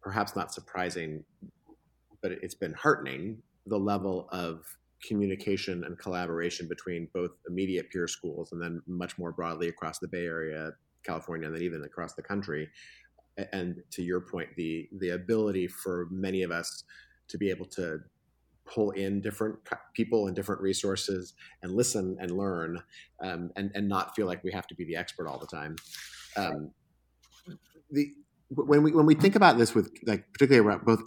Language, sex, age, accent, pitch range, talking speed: English, male, 30-49, American, 90-105 Hz, 170 wpm